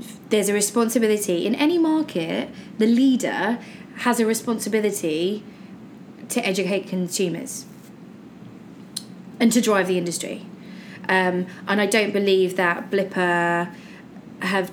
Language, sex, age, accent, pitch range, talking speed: English, female, 20-39, British, 185-215 Hz, 110 wpm